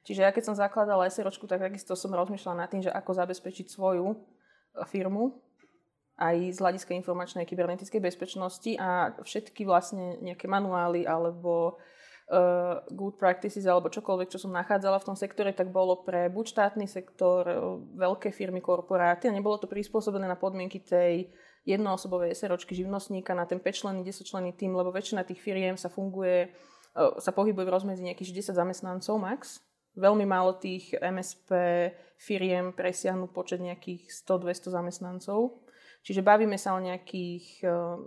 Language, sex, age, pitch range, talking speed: Slovak, female, 20-39, 180-205 Hz, 155 wpm